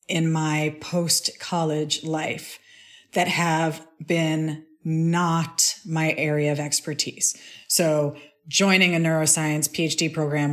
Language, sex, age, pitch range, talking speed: English, female, 40-59, 155-190 Hz, 105 wpm